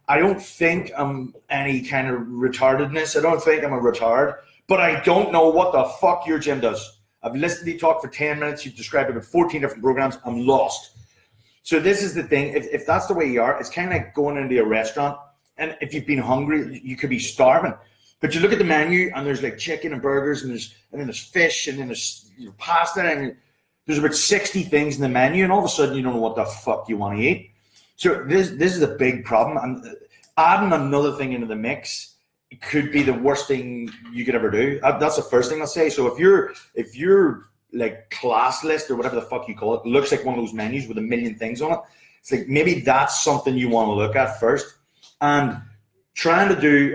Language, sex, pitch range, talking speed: English, male, 125-160 Hz, 235 wpm